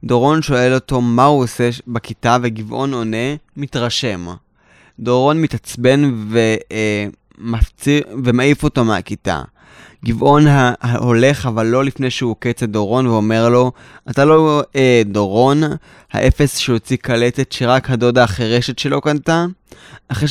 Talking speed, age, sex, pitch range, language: 125 wpm, 20-39, male, 110-140 Hz, Hebrew